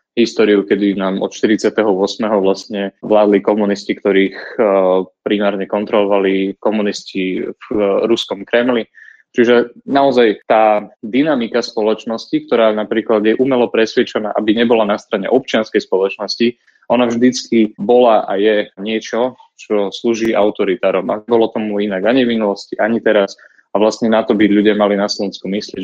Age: 20-39